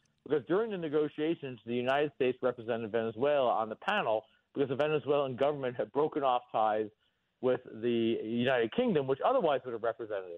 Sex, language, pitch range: male, English, 115-145 Hz